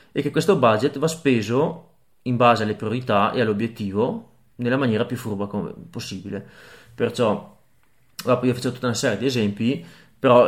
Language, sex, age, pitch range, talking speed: Italian, male, 30-49, 105-125 Hz, 150 wpm